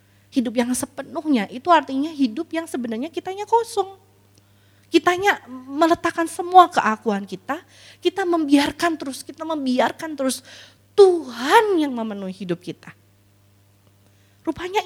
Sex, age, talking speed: female, 20-39, 110 wpm